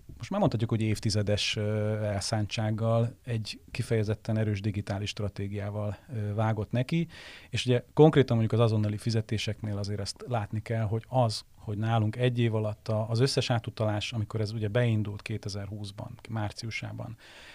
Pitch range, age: 105-125 Hz, 30-49